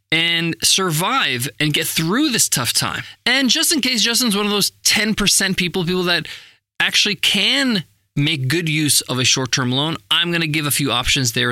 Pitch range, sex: 135-185 Hz, male